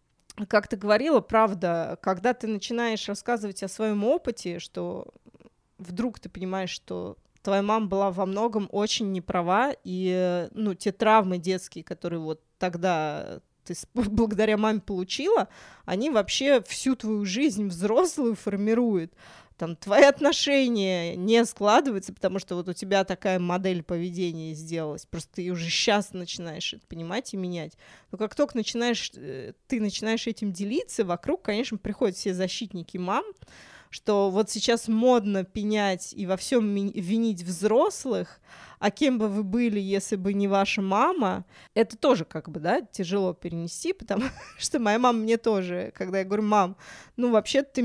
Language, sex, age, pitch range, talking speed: Russian, female, 20-39, 185-225 Hz, 150 wpm